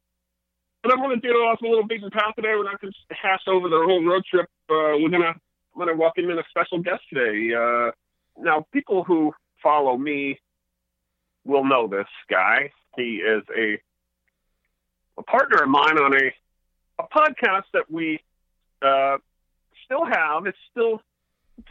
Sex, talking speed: male, 175 wpm